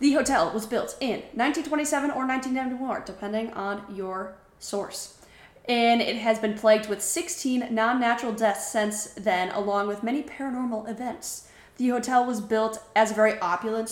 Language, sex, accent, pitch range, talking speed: English, female, American, 200-235 Hz, 155 wpm